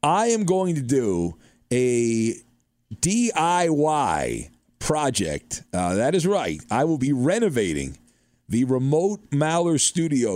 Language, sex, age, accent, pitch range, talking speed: English, male, 40-59, American, 115-175 Hz, 115 wpm